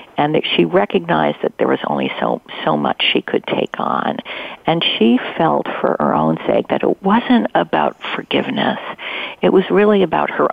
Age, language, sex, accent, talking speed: 50-69, English, female, American, 180 wpm